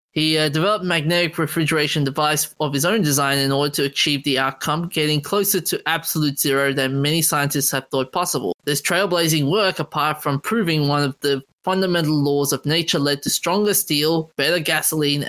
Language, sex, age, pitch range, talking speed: English, male, 20-39, 145-175 Hz, 185 wpm